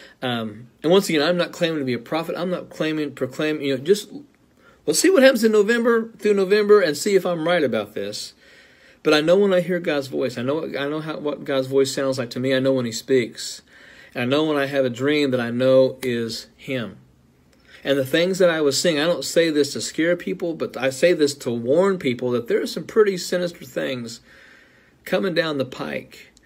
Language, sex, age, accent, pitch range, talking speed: English, male, 50-69, American, 130-170 Hz, 235 wpm